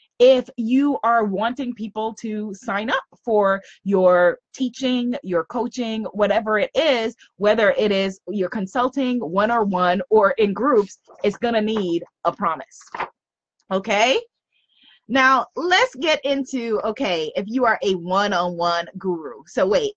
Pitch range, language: 175-235 Hz, English